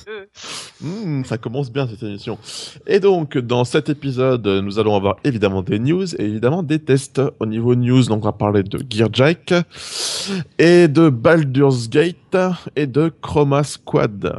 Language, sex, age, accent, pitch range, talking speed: French, male, 20-39, French, 105-140 Hz, 160 wpm